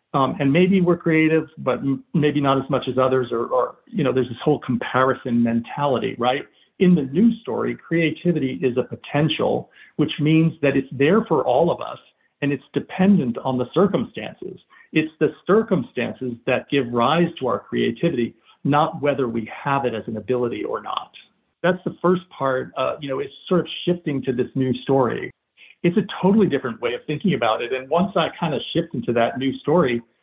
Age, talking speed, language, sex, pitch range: 50-69, 195 wpm, English, male, 125-160 Hz